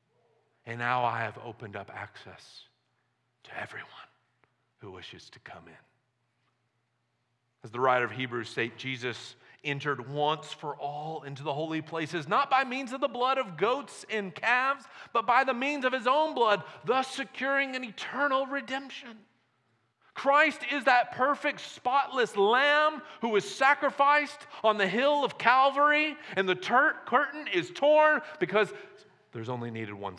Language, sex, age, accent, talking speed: English, male, 40-59, American, 150 wpm